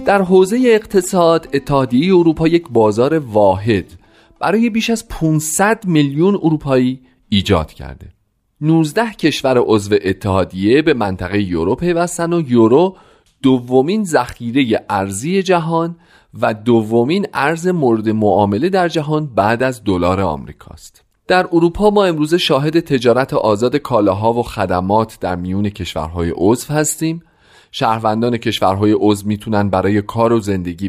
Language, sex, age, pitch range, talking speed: Persian, male, 40-59, 95-155 Hz, 120 wpm